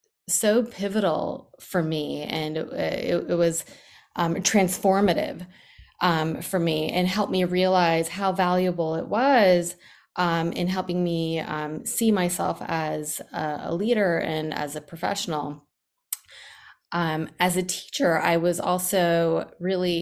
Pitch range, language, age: 155-185 Hz, English, 20-39